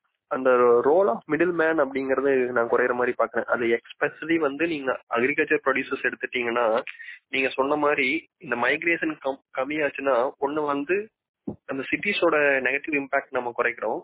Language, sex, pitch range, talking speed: Tamil, male, 130-185 Hz, 125 wpm